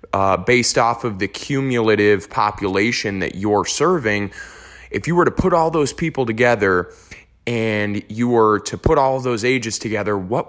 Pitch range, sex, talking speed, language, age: 100-125 Hz, male, 170 wpm, English, 20-39